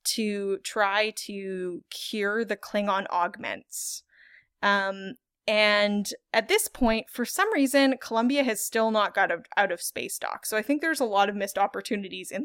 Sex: female